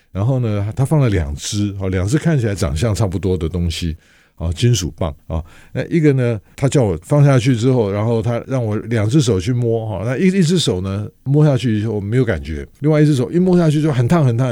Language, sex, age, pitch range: Chinese, male, 50-69, 90-125 Hz